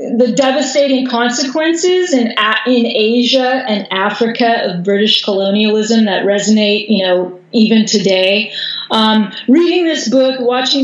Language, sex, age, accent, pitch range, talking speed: English, female, 30-49, American, 210-245 Hz, 120 wpm